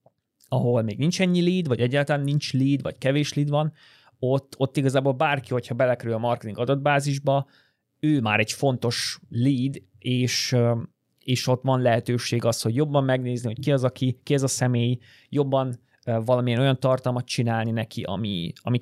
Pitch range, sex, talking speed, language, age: 120-135 Hz, male, 170 wpm, Hungarian, 30-49